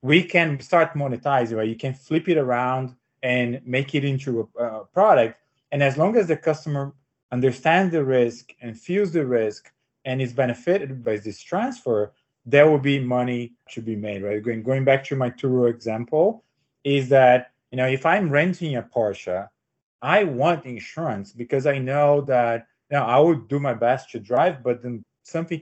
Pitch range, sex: 120-145 Hz, male